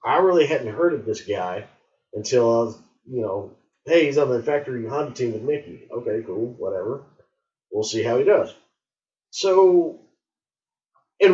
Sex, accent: male, American